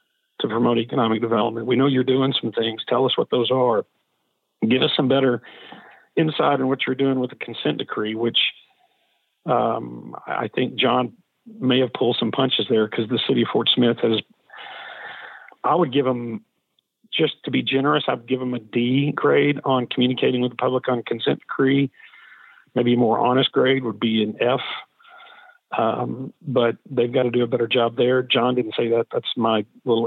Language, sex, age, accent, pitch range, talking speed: English, male, 50-69, American, 120-135 Hz, 190 wpm